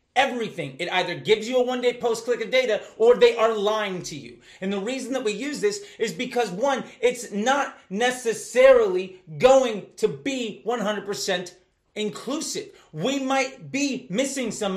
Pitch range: 205-255 Hz